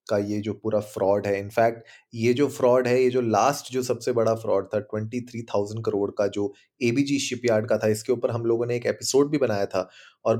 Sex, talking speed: male, 230 wpm